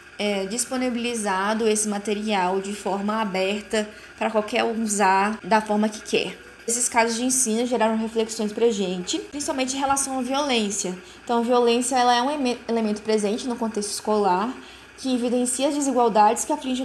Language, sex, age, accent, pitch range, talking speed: Portuguese, female, 20-39, Brazilian, 215-270 Hz, 165 wpm